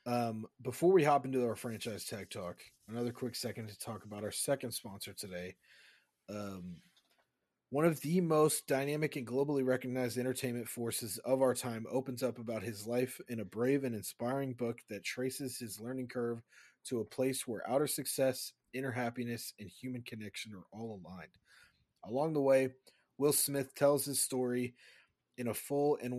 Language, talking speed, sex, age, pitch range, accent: English, 170 wpm, male, 30-49, 115-130 Hz, American